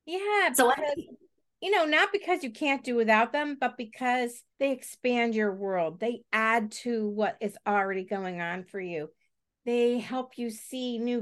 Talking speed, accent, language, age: 170 wpm, American, English, 50-69